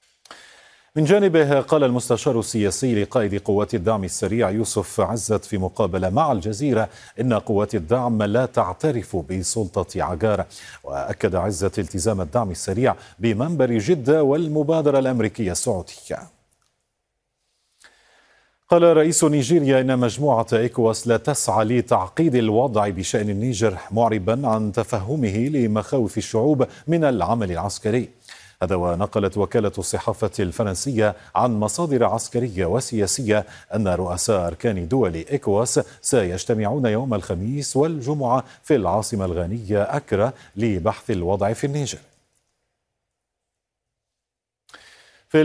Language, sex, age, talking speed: Arabic, male, 40-59, 105 wpm